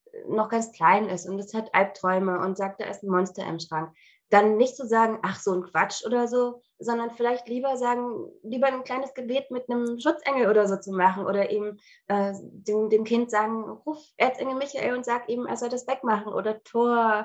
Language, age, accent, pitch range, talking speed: German, 20-39, German, 185-235 Hz, 210 wpm